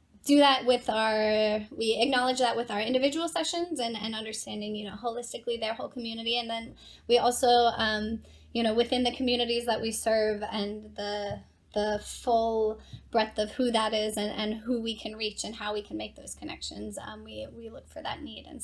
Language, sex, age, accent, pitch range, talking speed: English, female, 10-29, American, 210-235 Hz, 205 wpm